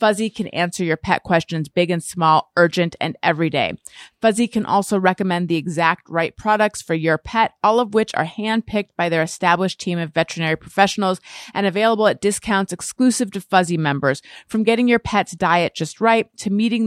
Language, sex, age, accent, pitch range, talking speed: English, female, 30-49, American, 180-240 Hz, 185 wpm